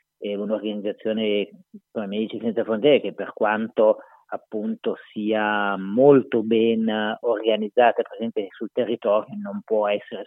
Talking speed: 110 wpm